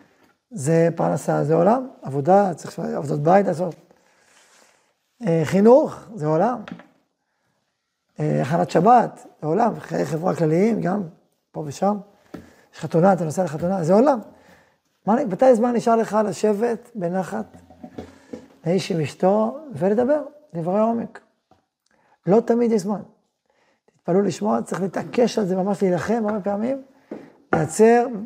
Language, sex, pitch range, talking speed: Hebrew, male, 165-215 Hz, 115 wpm